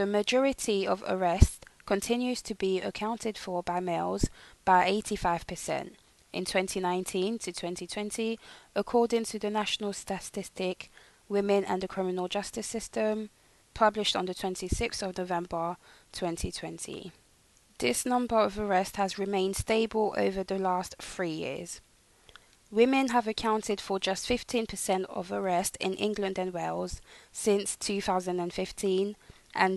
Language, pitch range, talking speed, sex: English, 185-215 Hz, 125 wpm, female